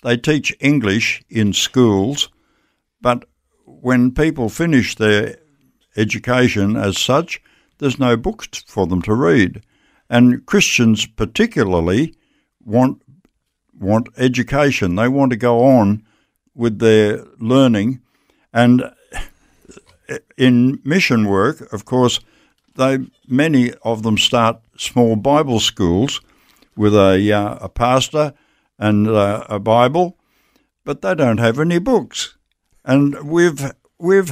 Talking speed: 115 wpm